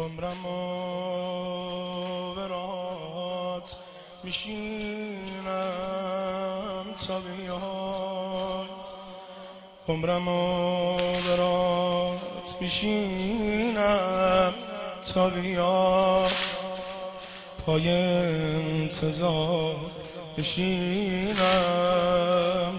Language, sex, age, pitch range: Persian, male, 20-39, 175-185 Hz